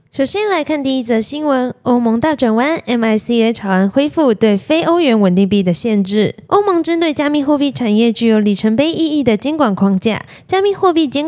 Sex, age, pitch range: female, 20-39, 220-300 Hz